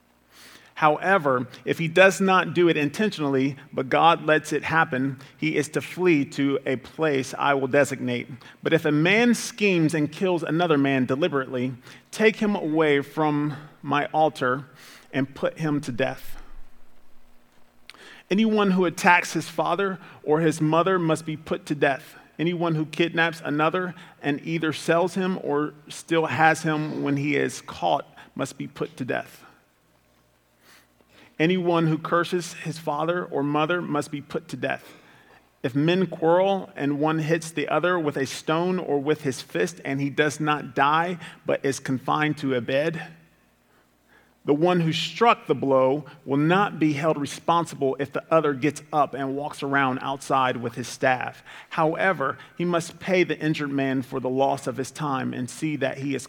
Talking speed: 165 wpm